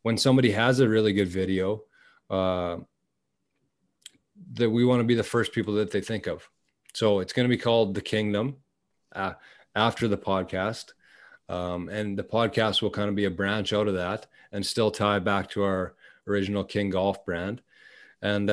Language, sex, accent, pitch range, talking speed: English, male, American, 100-120 Hz, 180 wpm